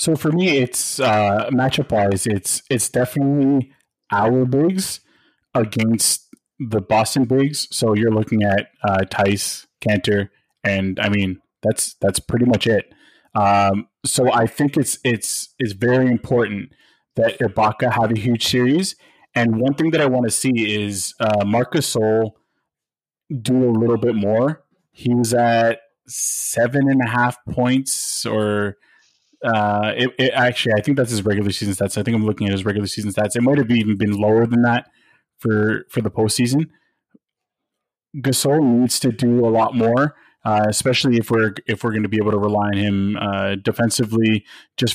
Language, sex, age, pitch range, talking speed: English, male, 20-39, 105-130 Hz, 170 wpm